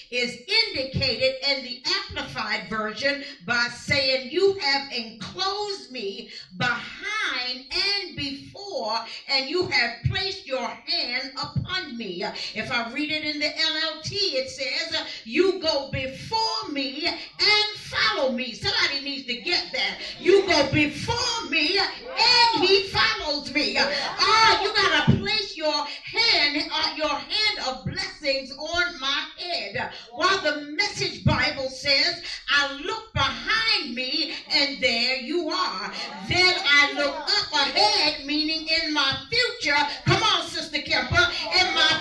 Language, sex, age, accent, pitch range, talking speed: English, female, 50-69, American, 275-380 Hz, 135 wpm